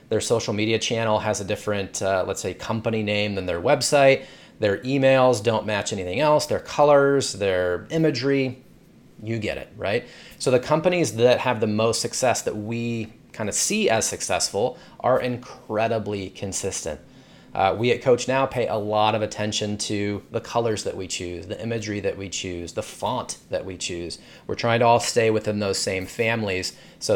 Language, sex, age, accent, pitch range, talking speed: English, male, 30-49, American, 100-125 Hz, 185 wpm